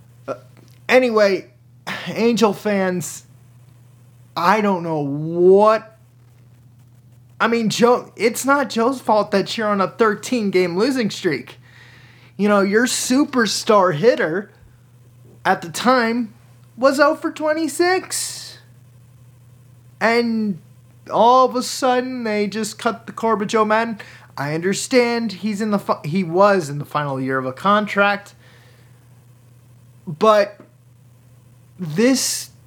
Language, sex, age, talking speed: English, male, 20-39, 115 wpm